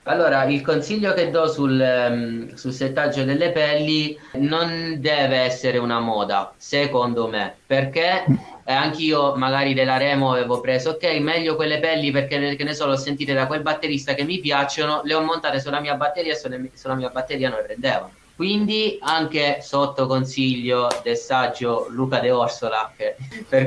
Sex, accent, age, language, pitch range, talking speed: male, native, 20-39, Italian, 125-155 Hz, 165 wpm